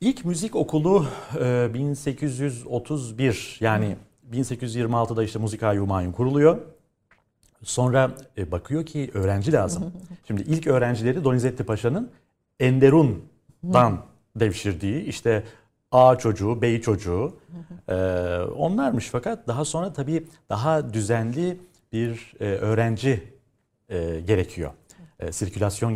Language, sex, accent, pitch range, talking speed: Turkish, male, native, 100-140 Hz, 90 wpm